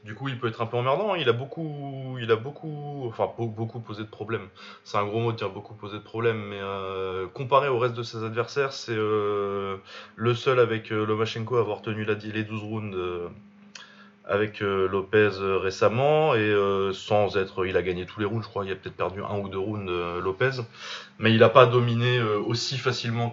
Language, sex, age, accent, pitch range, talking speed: French, male, 20-39, French, 100-125 Hz, 225 wpm